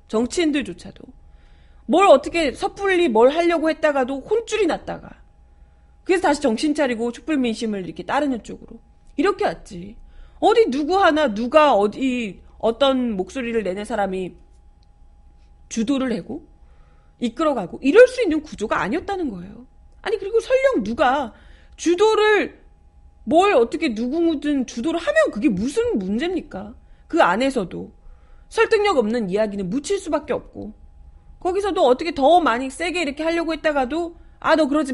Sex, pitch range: female, 210-330 Hz